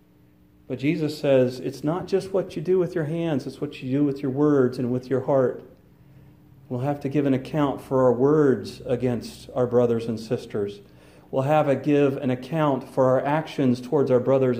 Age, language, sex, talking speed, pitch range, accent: 40-59, English, male, 200 wpm, 120-150 Hz, American